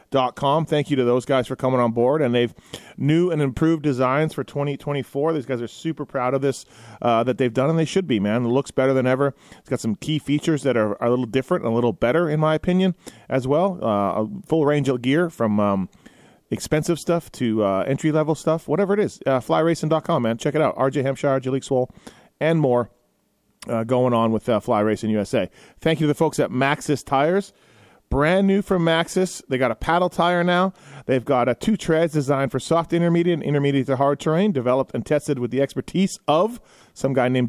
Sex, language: male, English